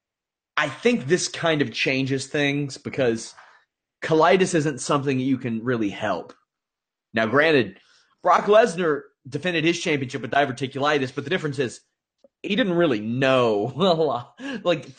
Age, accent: 30-49, American